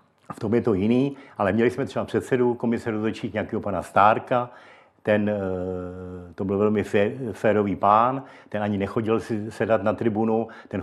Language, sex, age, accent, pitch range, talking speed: Czech, male, 60-79, native, 100-120 Hz, 165 wpm